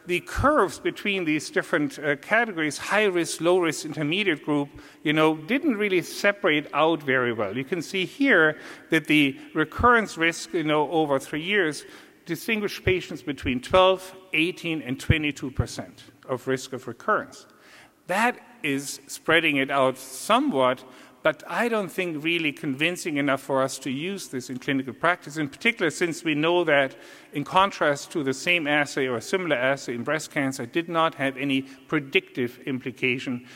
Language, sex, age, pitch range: English, male, 50-69, 135-175 Hz